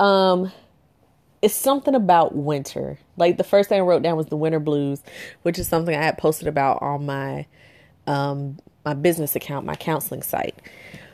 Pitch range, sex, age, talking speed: 145-180 Hz, female, 30-49, 170 wpm